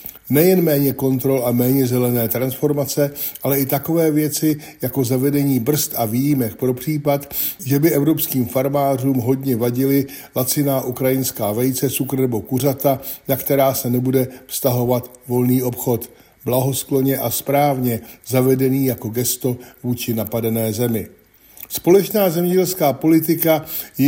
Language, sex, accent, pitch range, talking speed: Czech, male, native, 125-150 Hz, 125 wpm